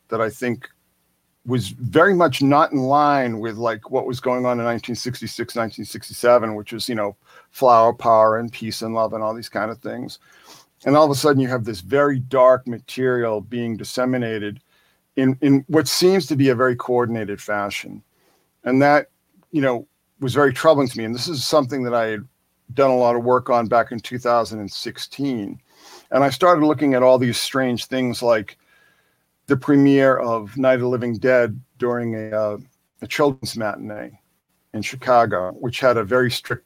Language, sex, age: English, male, 50-69